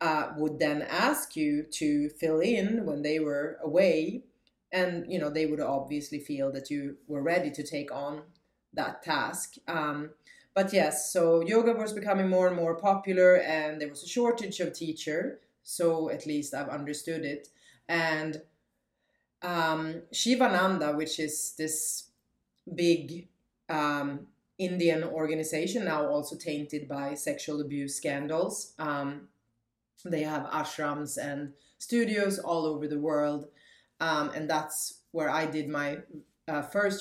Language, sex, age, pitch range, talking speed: English, female, 30-49, 145-165 Hz, 145 wpm